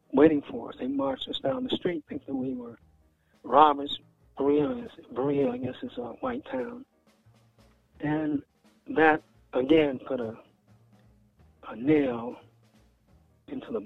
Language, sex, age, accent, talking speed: English, male, 60-79, American, 125 wpm